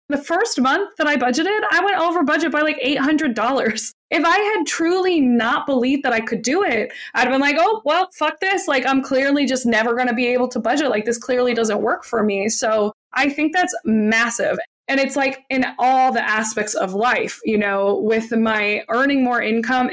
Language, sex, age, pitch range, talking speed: English, female, 20-39, 210-270 Hz, 215 wpm